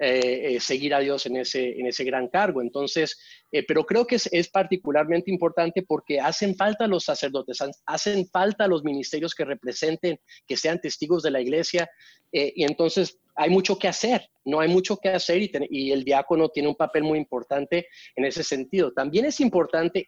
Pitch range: 145-185 Hz